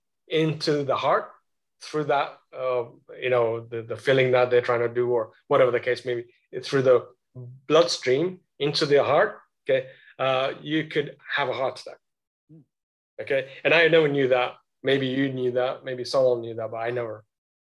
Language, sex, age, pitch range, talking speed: English, male, 30-49, 135-175 Hz, 180 wpm